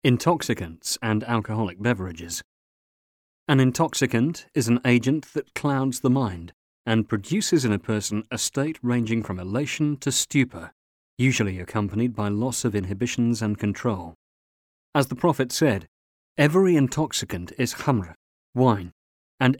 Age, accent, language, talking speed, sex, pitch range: 40-59, British, English, 130 wpm, male, 100-135 Hz